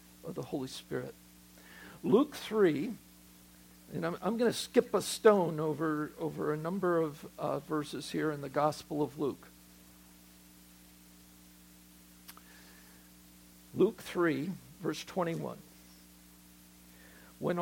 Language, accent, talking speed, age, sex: English, American, 110 wpm, 60-79, male